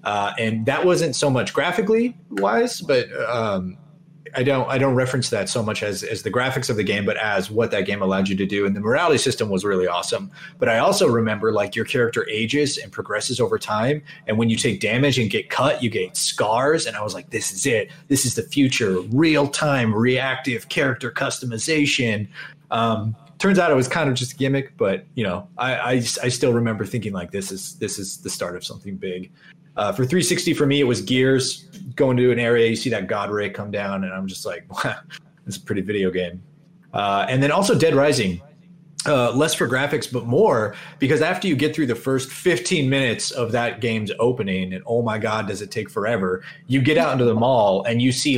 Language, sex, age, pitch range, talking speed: English, male, 30-49, 110-150 Hz, 225 wpm